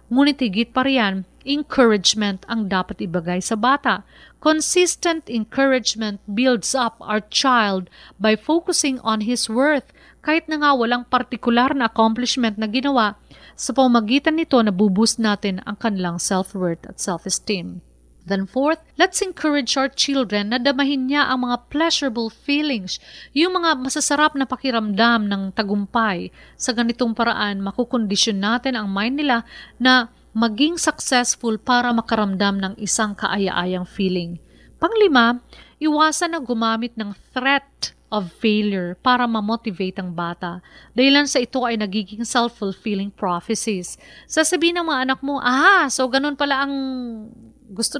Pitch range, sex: 200-265 Hz, female